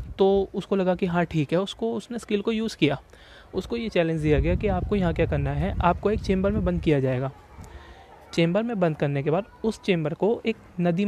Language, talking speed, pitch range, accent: Hindi, 225 wpm, 150-195 Hz, native